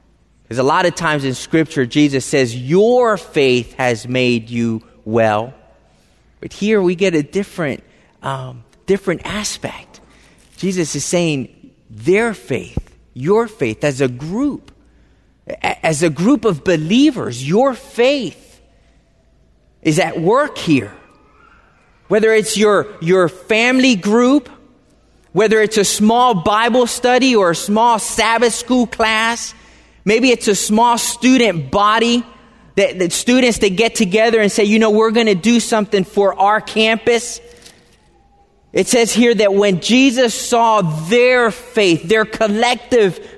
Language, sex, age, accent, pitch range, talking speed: English, male, 30-49, American, 155-235 Hz, 135 wpm